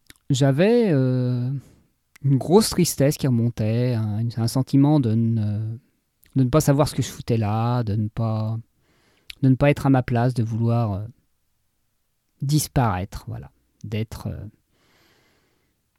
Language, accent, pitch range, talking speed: French, French, 115-150 Hz, 145 wpm